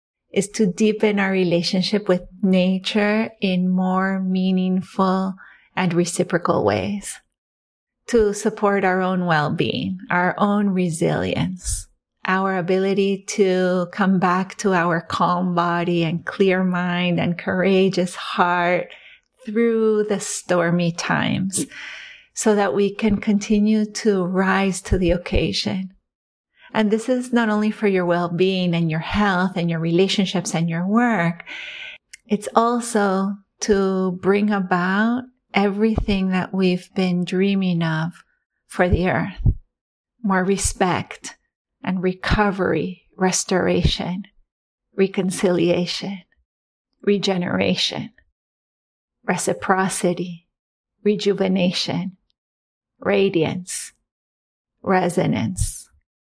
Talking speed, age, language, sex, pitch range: 100 wpm, 30-49, English, female, 175-205 Hz